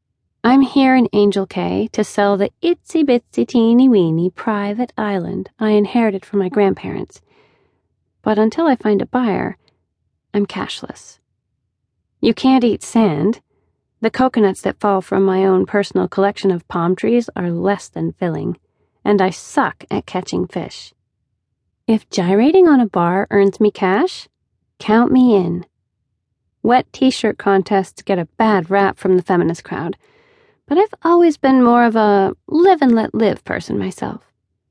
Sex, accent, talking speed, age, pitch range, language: female, American, 145 wpm, 40-59, 180-235 Hz, English